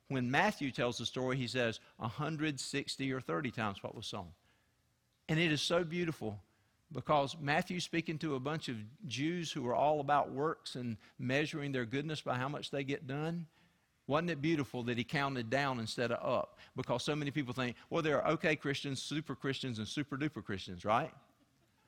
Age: 50-69